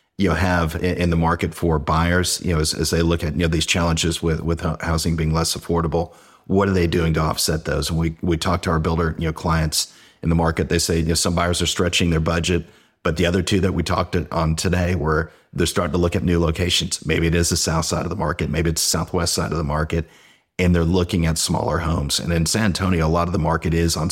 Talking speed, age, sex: 265 wpm, 40-59, male